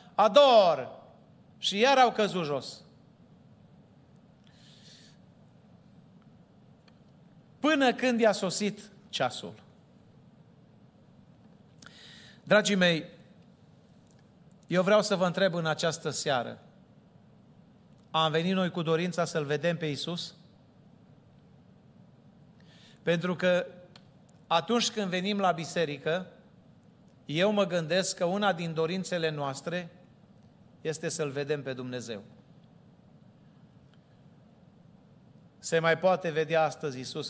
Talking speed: 90 wpm